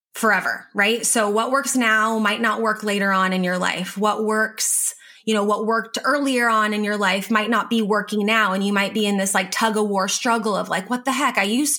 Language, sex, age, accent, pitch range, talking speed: English, female, 20-39, American, 205-235 Hz, 245 wpm